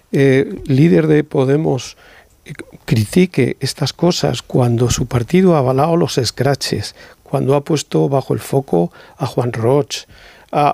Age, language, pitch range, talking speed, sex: 50-69, Spanish, 130-155 Hz, 135 wpm, male